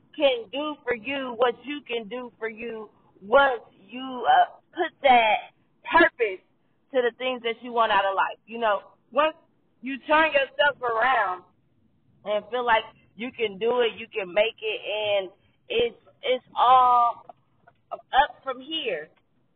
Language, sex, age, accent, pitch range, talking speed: English, female, 20-39, American, 215-280 Hz, 155 wpm